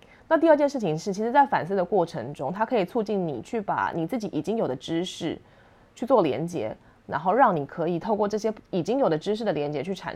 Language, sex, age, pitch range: Chinese, female, 20-39, 160-205 Hz